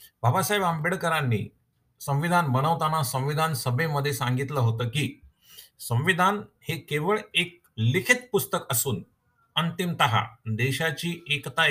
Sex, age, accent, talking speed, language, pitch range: male, 50-69, native, 95 wpm, Marathi, 125-160 Hz